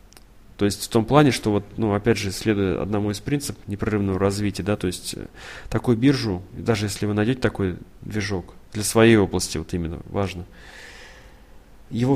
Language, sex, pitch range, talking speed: Russian, male, 95-115 Hz, 170 wpm